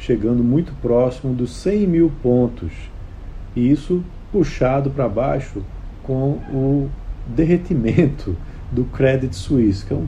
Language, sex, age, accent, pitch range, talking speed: Portuguese, male, 50-69, Brazilian, 100-135 Hz, 125 wpm